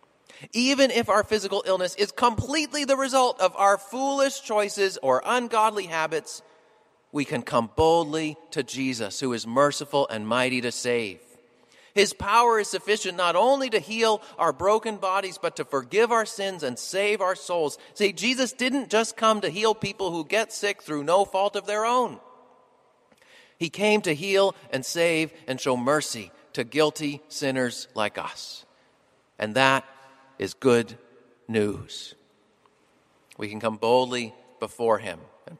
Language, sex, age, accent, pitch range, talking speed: English, male, 40-59, American, 135-210 Hz, 155 wpm